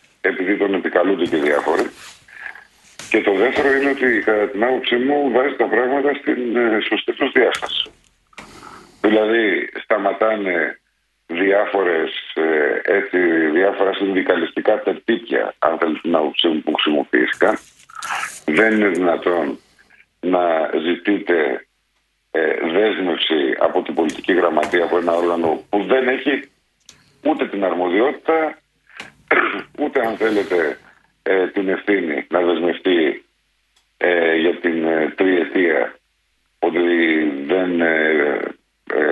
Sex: male